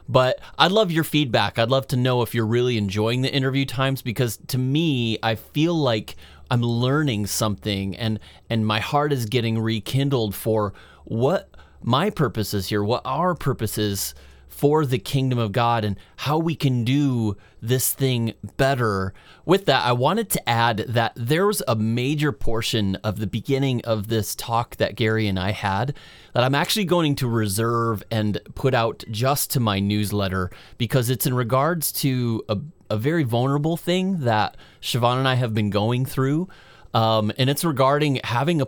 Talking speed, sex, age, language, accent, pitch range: 175 wpm, male, 30-49, English, American, 110-140 Hz